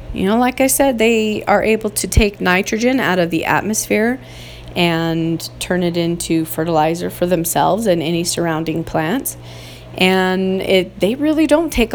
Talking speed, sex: 160 wpm, female